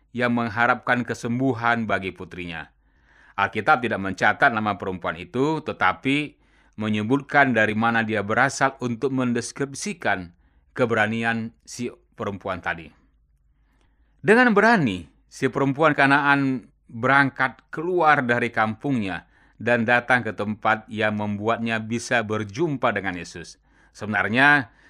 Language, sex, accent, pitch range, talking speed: Indonesian, male, native, 110-140 Hz, 105 wpm